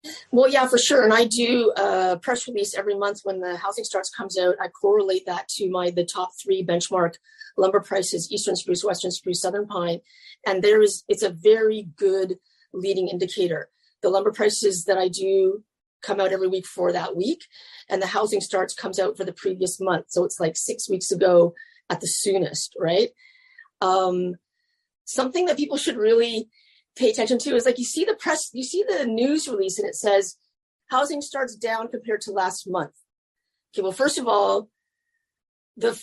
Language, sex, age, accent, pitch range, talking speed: English, female, 30-49, American, 185-255 Hz, 190 wpm